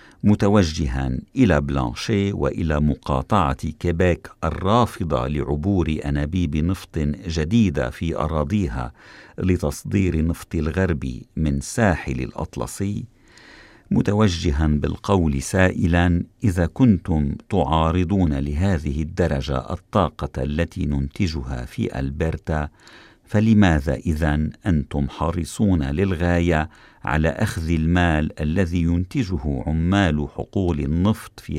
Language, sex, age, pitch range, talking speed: Arabic, male, 50-69, 75-95 Hz, 85 wpm